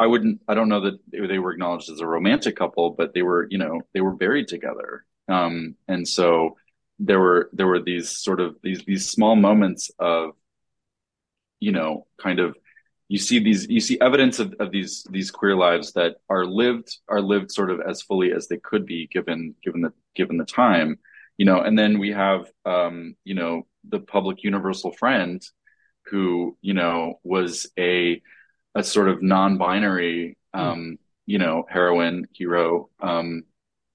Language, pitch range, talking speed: English, 85-105 Hz, 175 wpm